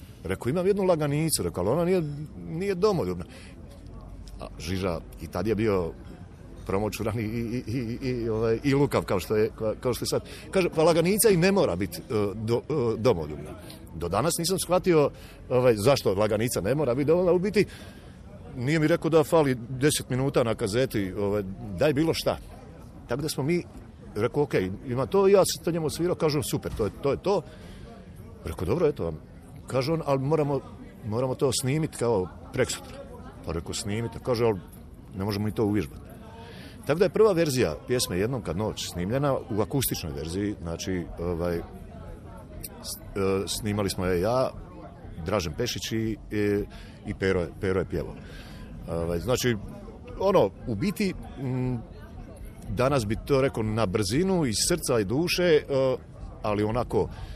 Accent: native